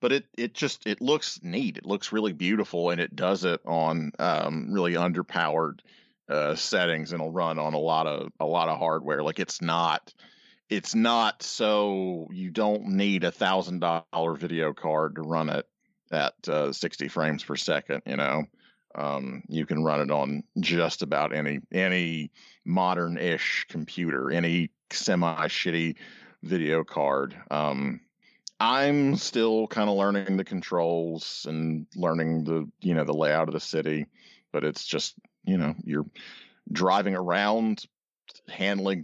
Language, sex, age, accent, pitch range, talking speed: English, male, 40-59, American, 80-100 Hz, 155 wpm